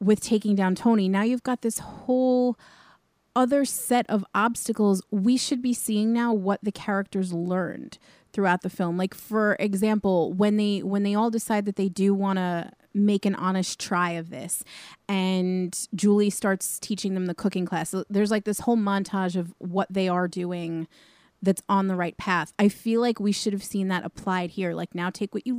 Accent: American